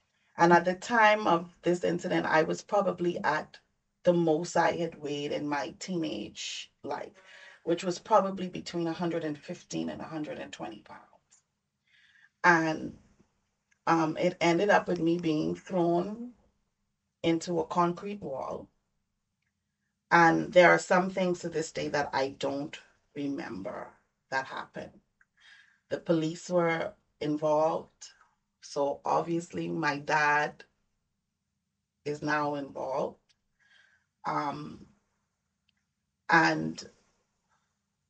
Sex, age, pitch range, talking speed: female, 30-49, 150-180 Hz, 105 wpm